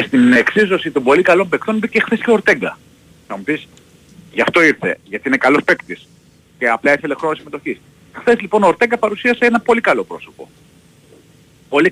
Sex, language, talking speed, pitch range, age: male, Greek, 180 wpm, 125-200 Hz, 40-59